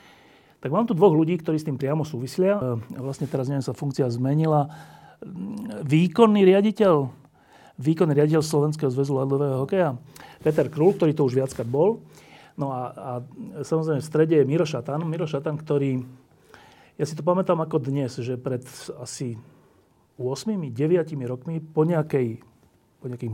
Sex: male